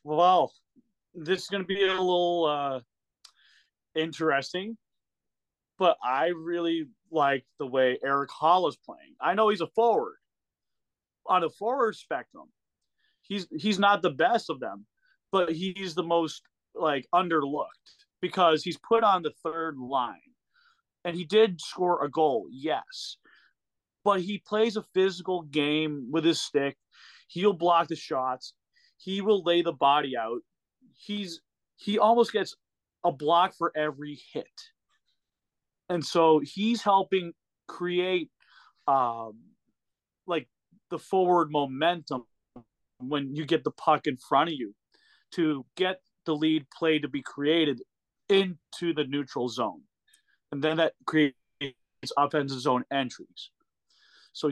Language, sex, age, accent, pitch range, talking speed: English, male, 30-49, American, 150-195 Hz, 135 wpm